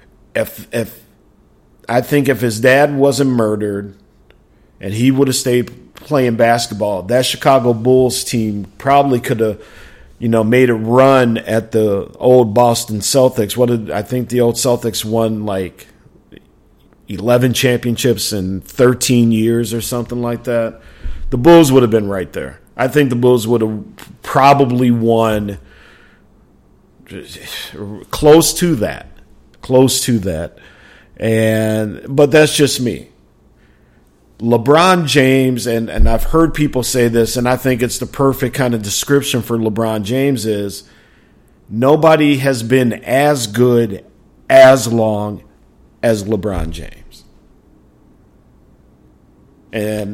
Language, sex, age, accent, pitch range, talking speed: English, male, 50-69, American, 110-130 Hz, 130 wpm